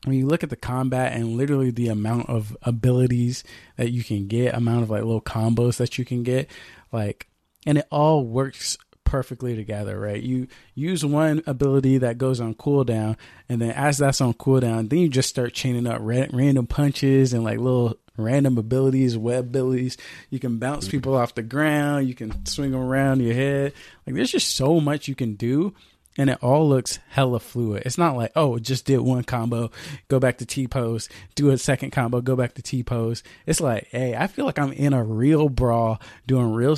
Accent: American